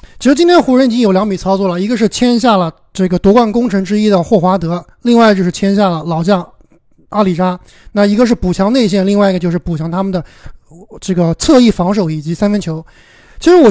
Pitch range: 185-265 Hz